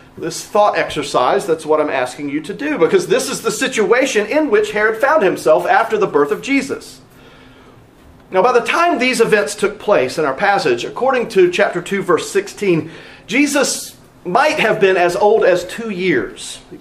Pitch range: 180-265 Hz